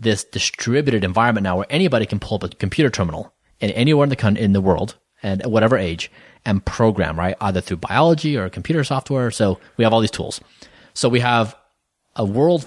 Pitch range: 95-120 Hz